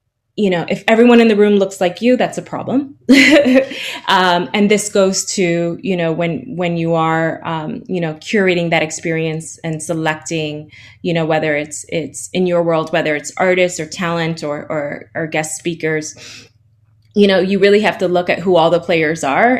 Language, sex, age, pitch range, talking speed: English, female, 20-39, 160-195 Hz, 195 wpm